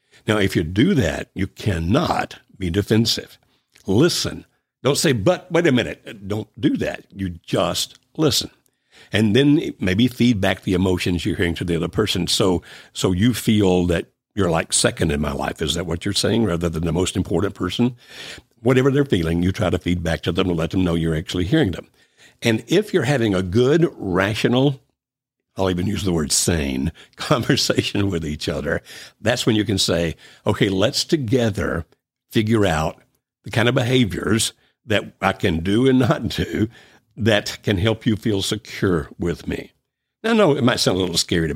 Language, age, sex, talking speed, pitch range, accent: English, 60-79, male, 185 wpm, 90-115 Hz, American